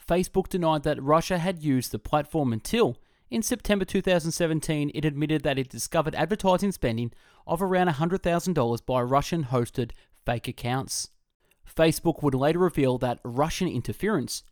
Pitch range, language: 125-175 Hz, English